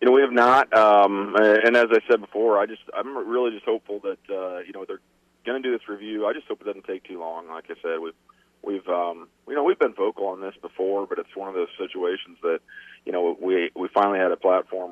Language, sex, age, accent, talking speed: English, male, 40-59, American, 260 wpm